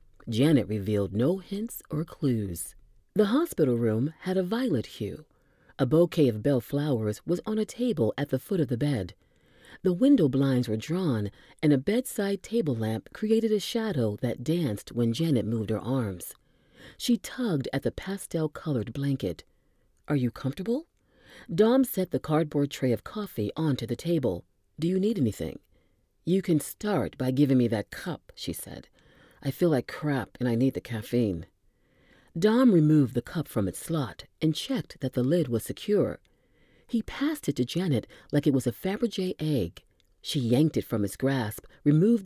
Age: 40-59